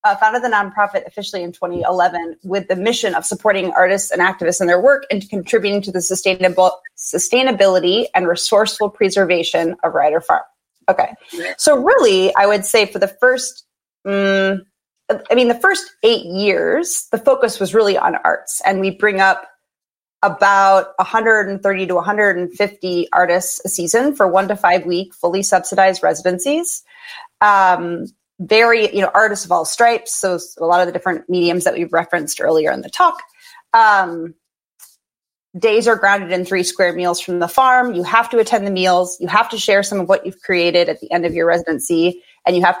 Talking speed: 190 wpm